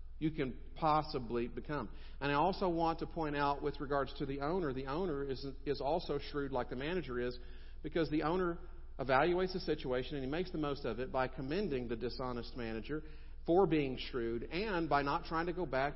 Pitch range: 125-155 Hz